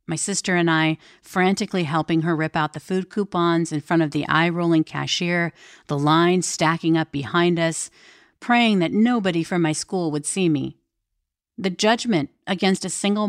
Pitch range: 155-200 Hz